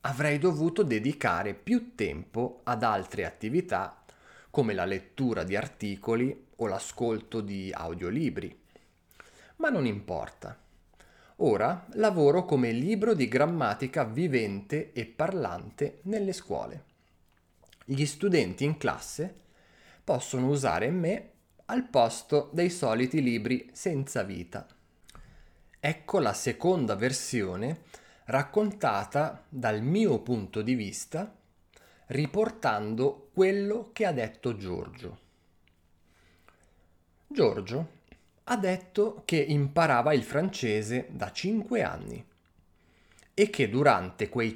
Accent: native